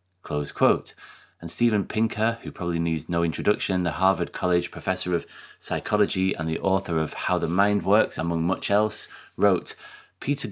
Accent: British